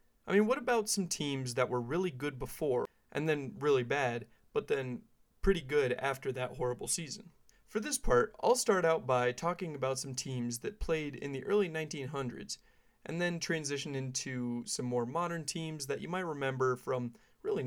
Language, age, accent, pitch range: English, 30-49, American, 125-175 Hz